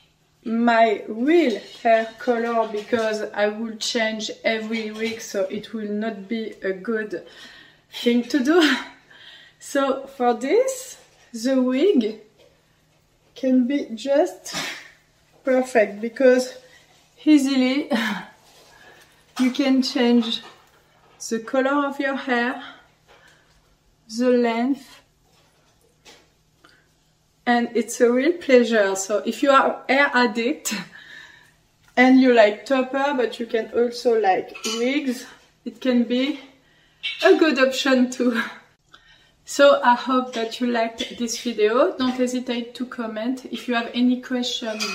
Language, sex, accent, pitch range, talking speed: English, female, French, 225-260 Hz, 115 wpm